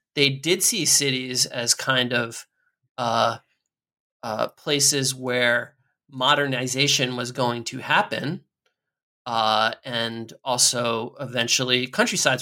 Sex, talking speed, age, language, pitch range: male, 100 wpm, 30-49, English, 125-165 Hz